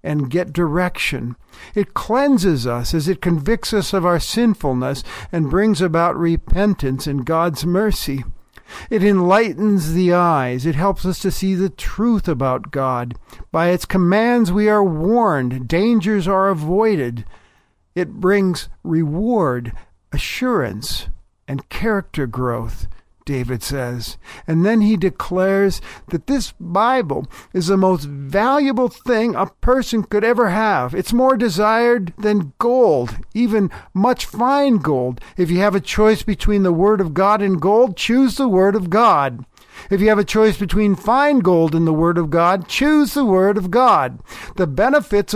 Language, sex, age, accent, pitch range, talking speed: English, male, 50-69, American, 165-215 Hz, 150 wpm